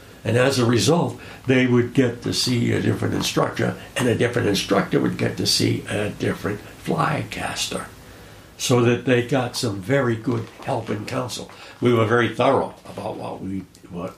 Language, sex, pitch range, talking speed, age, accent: English, male, 95-120 Hz, 180 wpm, 60-79, American